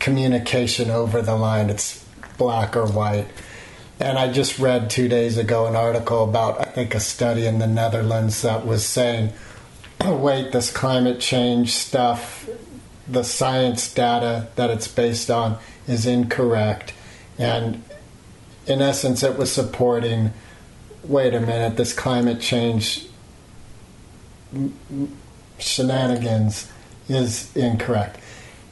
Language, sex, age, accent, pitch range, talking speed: English, male, 40-59, American, 110-125 Hz, 120 wpm